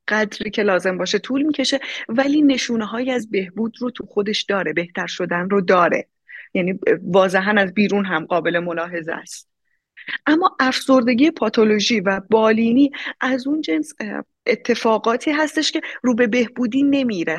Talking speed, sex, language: 145 wpm, female, Persian